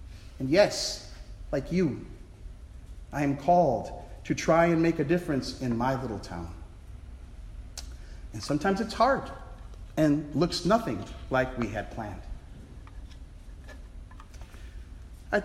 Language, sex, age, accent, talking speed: English, male, 40-59, American, 115 wpm